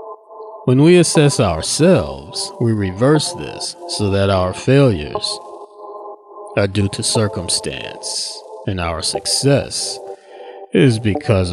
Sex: male